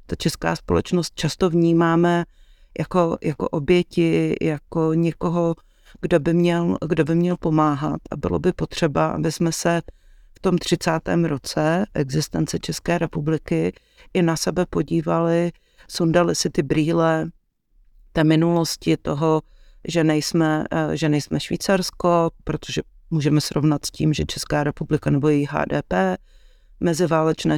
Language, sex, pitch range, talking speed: Czech, female, 155-175 Hz, 130 wpm